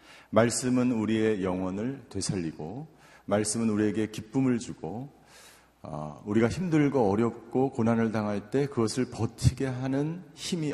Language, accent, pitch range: Korean, native, 105-140 Hz